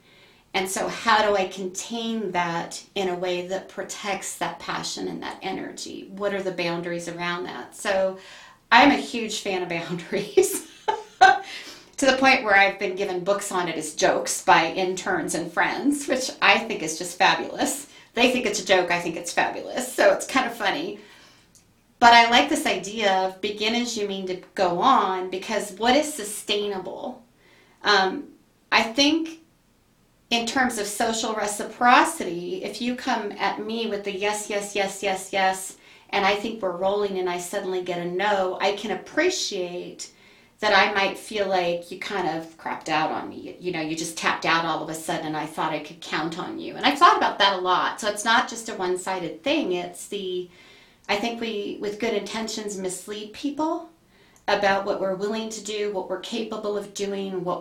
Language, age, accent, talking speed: English, 40-59, American, 190 wpm